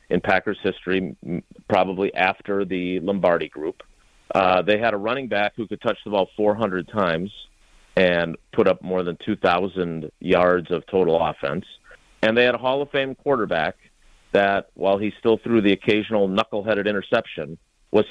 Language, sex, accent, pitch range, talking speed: English, male, American, 90-135 Hz, 160 wpm